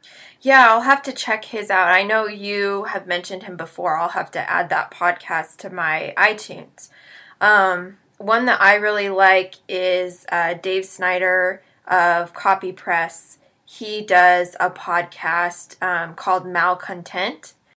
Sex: female